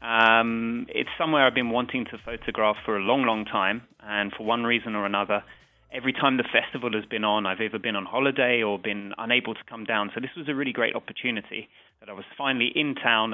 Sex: male